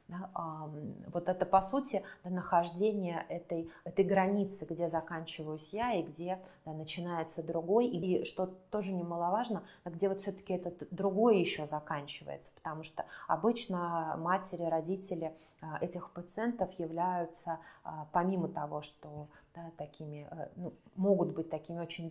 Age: 30-49